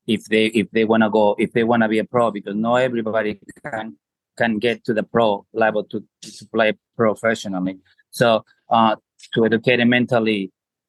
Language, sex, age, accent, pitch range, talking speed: English, male, 30-49, Spanish, 110-120 Hz, 175 wpm